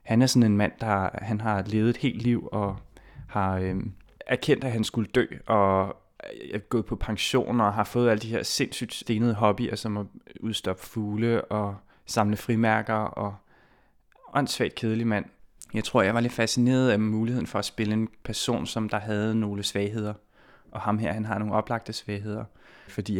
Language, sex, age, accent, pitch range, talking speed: Danish, male, 20-39, native, 100-115 Hz, 190 wpm